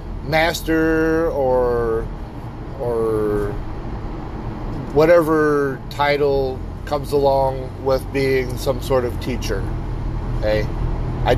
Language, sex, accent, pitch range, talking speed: English, male, American, 120-155 Hz, 80 wpm